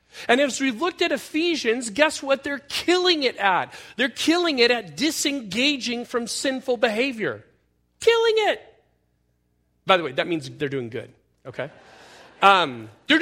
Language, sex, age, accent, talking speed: English, male, 40-59, American, 150 wpm